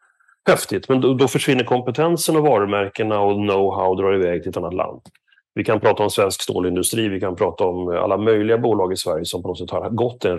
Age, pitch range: 30-49, 95-140 Hz